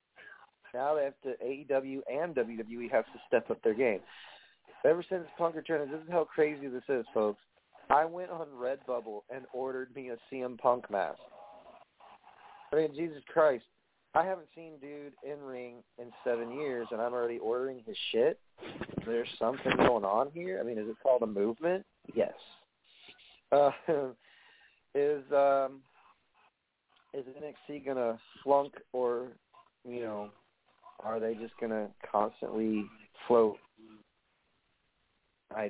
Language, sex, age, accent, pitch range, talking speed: English, male, 40-59, American, 110-140 Hz, 145 wpm